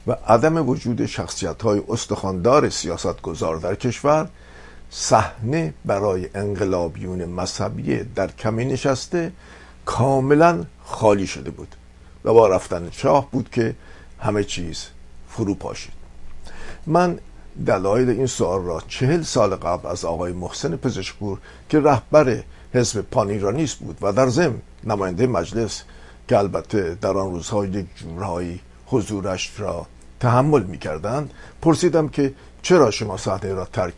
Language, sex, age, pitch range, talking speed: Persian, male, 50-69, 90-130 Hz, 125 wpm